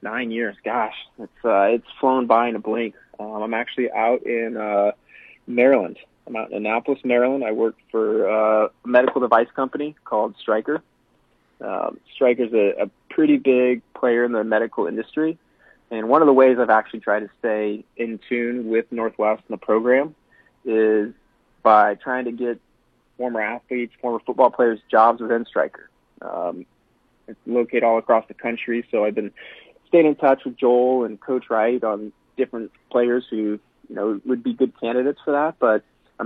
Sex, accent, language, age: male, American, English, 30-49